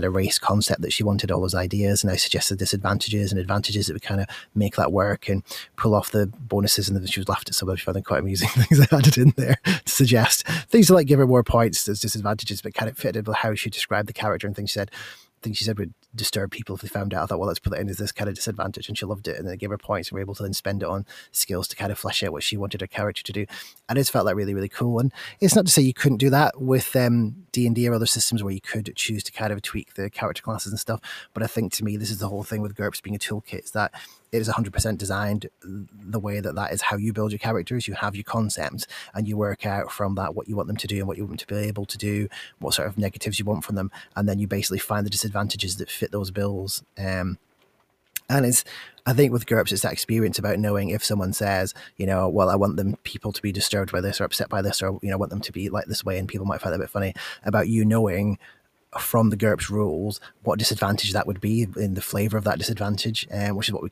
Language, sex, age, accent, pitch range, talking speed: English, male, 20-39, British, 100-110 Hz, 290 wpm